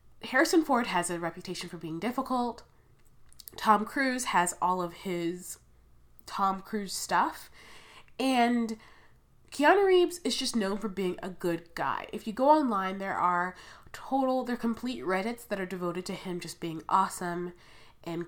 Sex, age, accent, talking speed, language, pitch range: female, 20-39, American, 155 wpm, English, 175-220 Hz